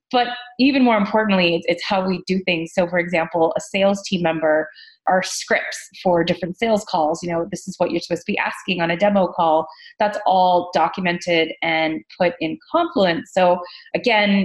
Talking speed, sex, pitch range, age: 185 wpm, female, 165-195 Hz, 20-39